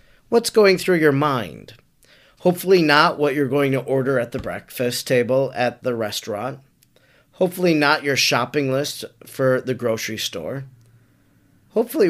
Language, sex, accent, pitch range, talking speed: English, male, American, 130-170 Hz, 145 wpm